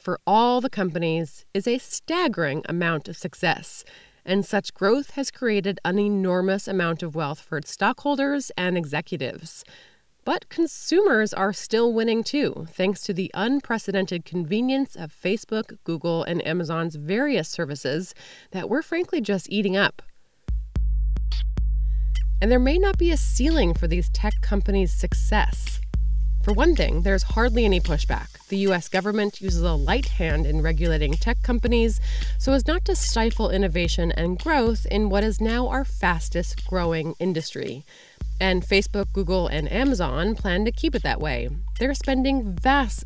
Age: 20-39